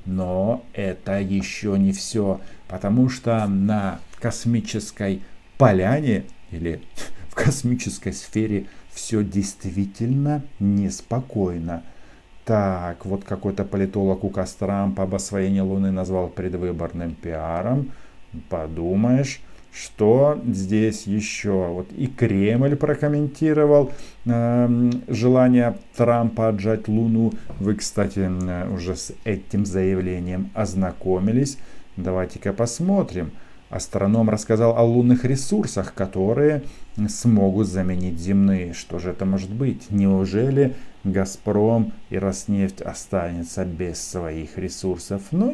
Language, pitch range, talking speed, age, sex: Russian, 95-115 Hz, 100 wpm, 50-69, male